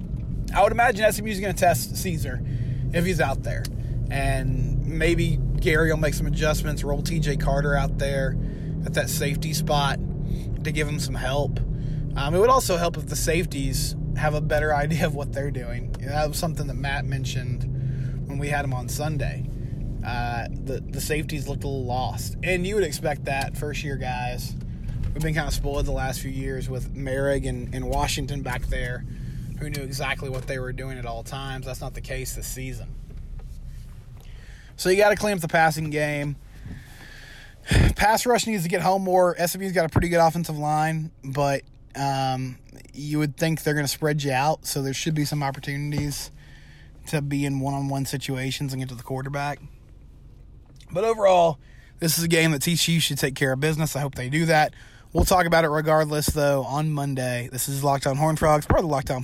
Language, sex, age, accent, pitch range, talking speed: English, male, 20-39, American, 130-155 Hz, 200 wpm